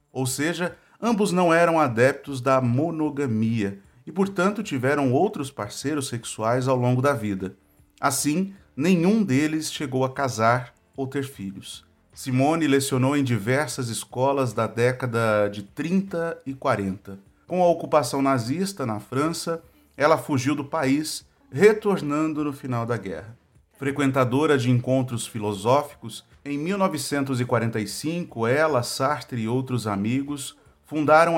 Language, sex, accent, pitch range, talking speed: Portuguese, male, Brazilian, 115-155 Hz, 125 wpm